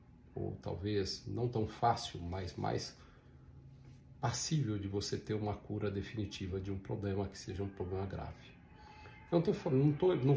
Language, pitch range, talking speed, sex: Portuguese, 95-115 Hz, 155 wpm, male